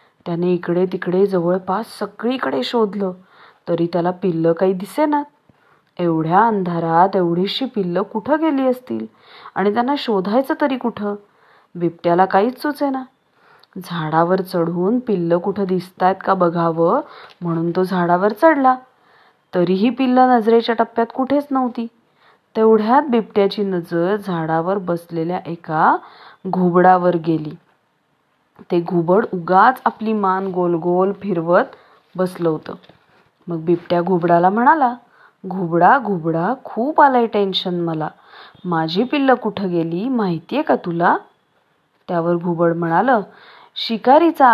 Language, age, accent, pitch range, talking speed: English, 30-49, Indian, 175-235 Hz, 90 wpm